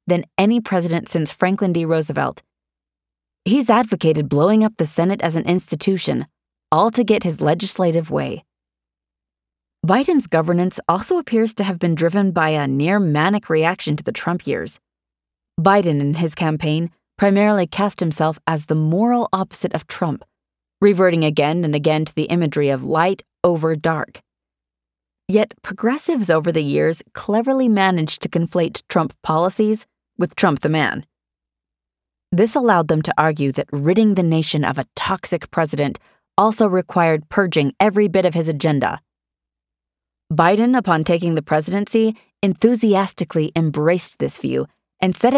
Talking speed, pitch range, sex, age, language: 145 wpm, 150-195 Hz, female, 20-39, English